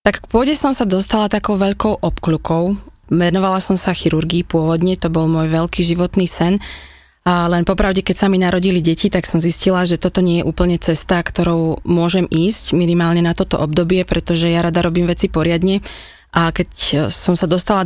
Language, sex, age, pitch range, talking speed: Slovak, female, 20-39, 165-190 Hz, 180 wpm